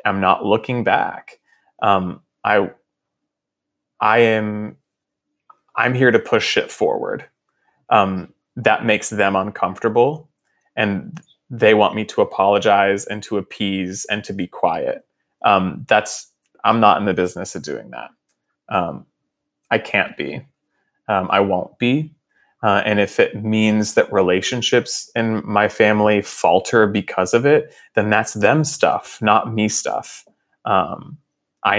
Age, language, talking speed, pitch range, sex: 20-39, English, 140 wpm, 100-125 Hz, male